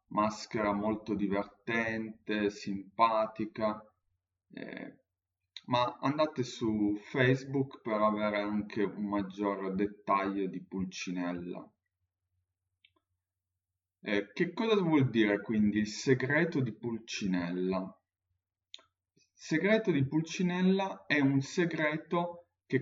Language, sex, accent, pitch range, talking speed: Italian, male, native, 95-135 Hz, 90 wpm